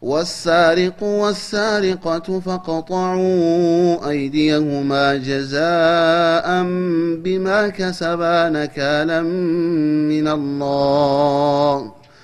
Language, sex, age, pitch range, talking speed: Amharic, male, 30-49, 145-170 Hz, 50 wpm